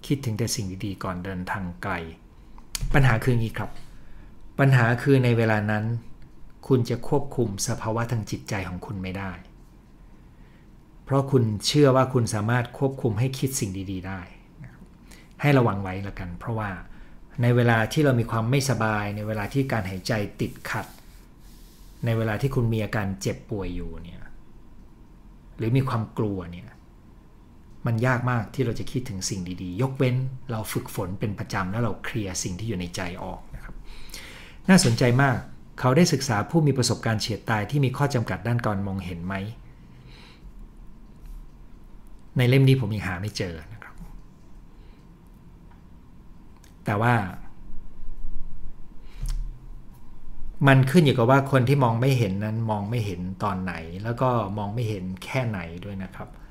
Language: English